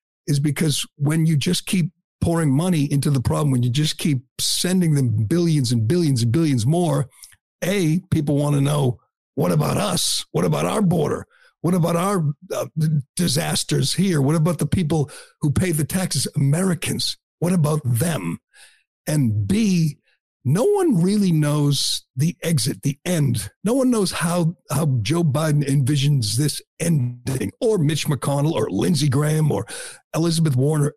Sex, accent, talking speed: male, American, 155 wpm